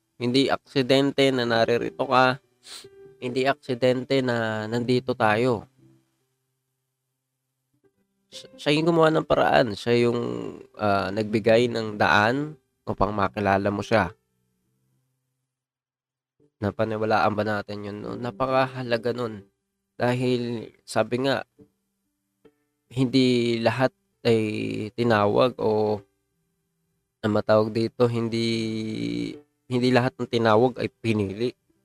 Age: 20-39